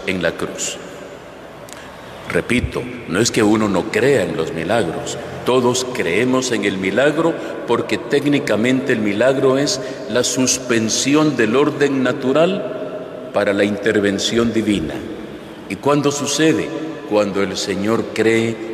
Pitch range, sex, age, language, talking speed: 105-135 Hz, male, 50-69, Spanish, 125 wpm